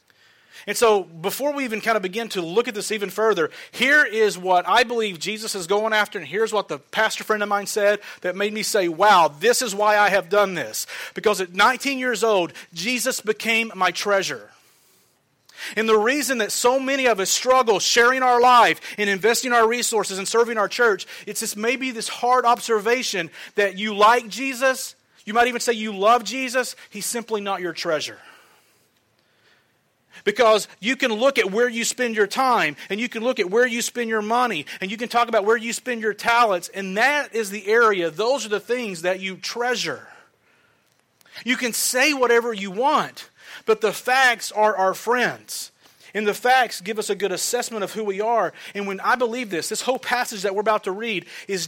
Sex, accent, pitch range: male, American, 200-245 Hz